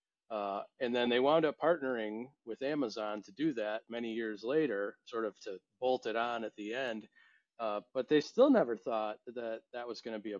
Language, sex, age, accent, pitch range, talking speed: English, male, 40-59, American, 110-140 Hz, 215 wpm